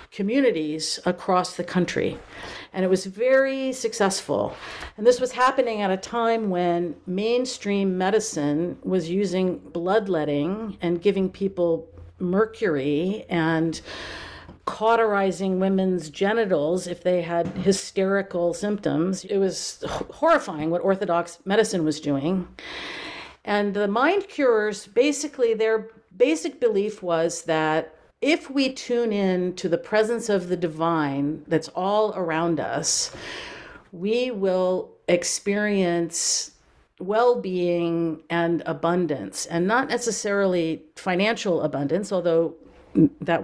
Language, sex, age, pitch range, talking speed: English, female, 50-69, 170-220 Hz, 110 wpm